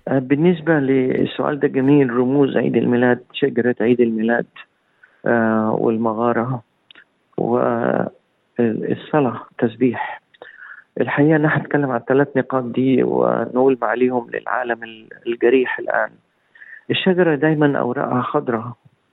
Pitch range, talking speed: 120-145 Hz, 95 wpm